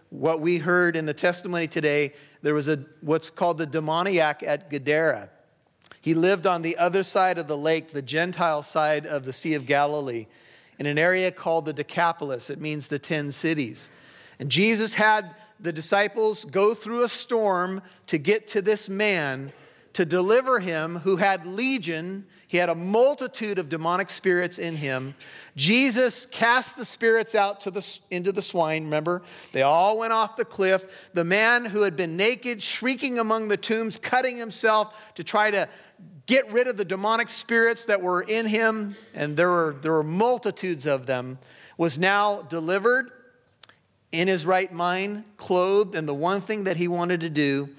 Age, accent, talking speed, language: 40-59, American, 175 wpm, English